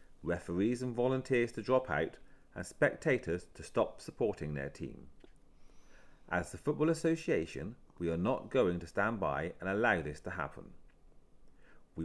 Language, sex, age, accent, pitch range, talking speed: English, male, 40-59, British, 85-125 Hz, 150 wpm